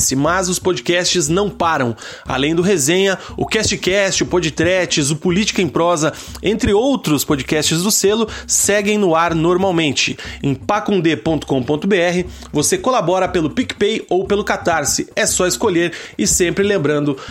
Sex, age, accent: male, 30-49, Brazilian